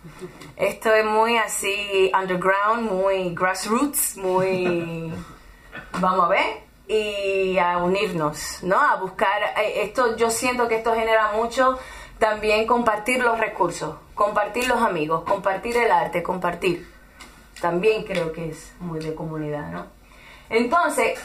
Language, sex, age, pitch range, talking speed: Spanish, female, 30-49, 190-235 Hz, 125 wpm